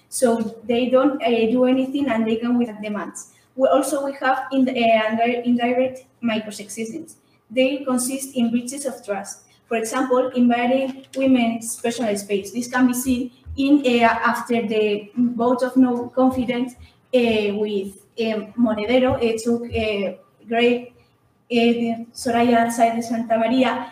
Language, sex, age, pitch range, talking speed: English, female, 20-39, 225-255 Hz, 145 wpm